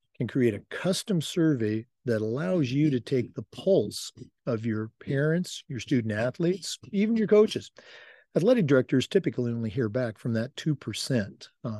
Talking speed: 160 wpm